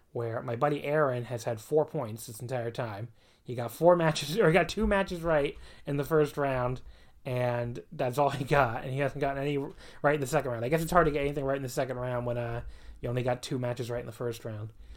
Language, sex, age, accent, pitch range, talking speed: English, male, 30-49, American, 120-150 Hz, 255 wpm